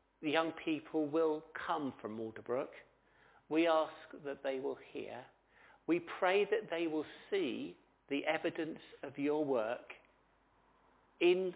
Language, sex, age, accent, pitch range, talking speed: English, male, 50-69, British, 140-165 Hz, 125 wpm